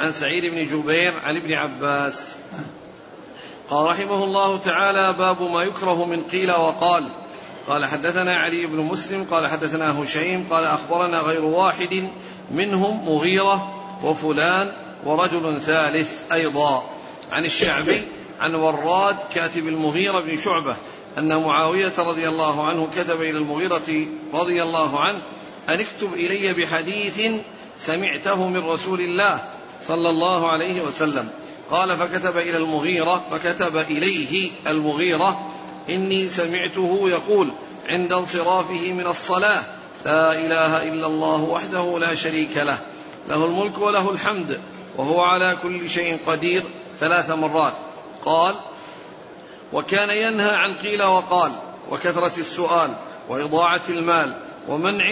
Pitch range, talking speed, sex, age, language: 160-185 Hz, 120 wpm, male, 50-69, Arabic